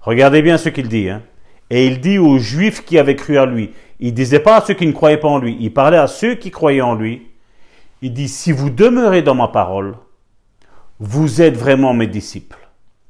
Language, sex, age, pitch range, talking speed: French, male, 50-69, 115-185 Hz, 220 wpm